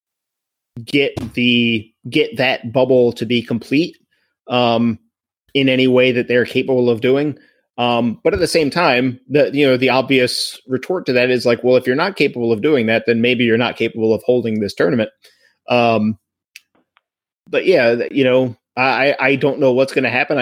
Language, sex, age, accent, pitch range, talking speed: English, male, 30-49, American, 120-135 Hz, 185 wpm